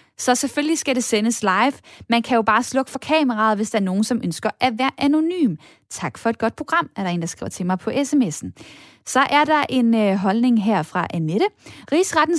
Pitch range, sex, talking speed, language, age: 215-275 Hz, female, 220 wpm, Danish, 10-29